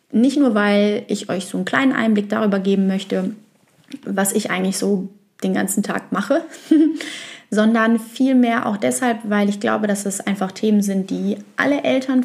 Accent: German